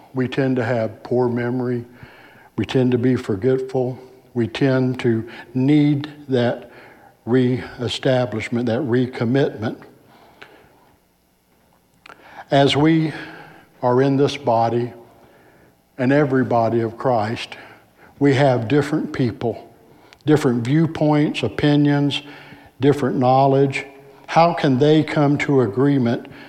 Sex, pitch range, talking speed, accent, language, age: male, 120-145 Hz, 100 wpm, American, English, 60-79